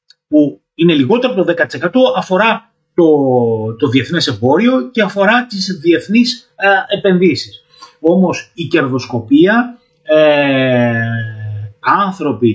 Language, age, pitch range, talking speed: Greek, 30-49, 125-195 Hz, 105 wpm